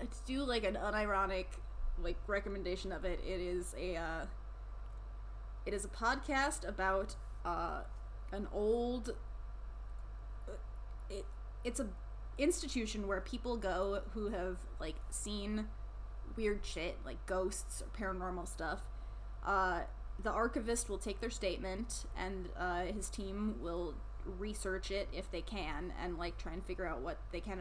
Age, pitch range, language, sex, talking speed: 20-39, 180-215 Hz, English, female, 140 wpm